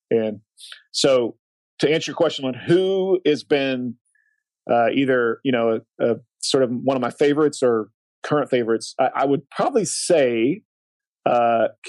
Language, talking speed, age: English, 155 wpm, 40-59